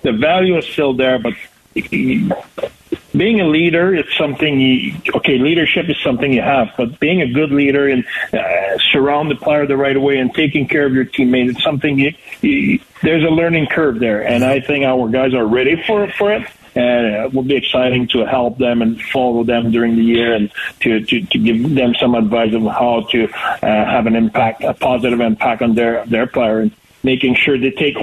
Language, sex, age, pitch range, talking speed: English, male, 50-69, 120-150 Hz, 210 wpm